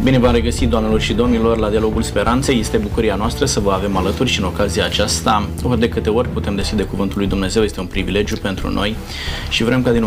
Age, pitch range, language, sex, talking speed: 20-39, 100-120 Hz, Romanian, male, 225 wpm